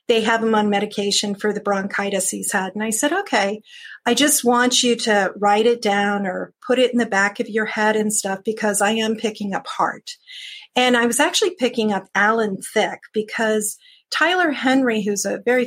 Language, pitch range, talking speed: English, 205-260 Hz, 205 wpm